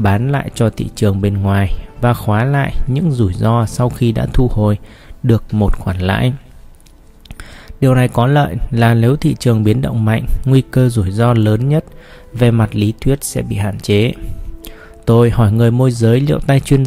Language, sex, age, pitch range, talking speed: Vietnamese, male, 20-39, 105-130 Hz, 195 wpm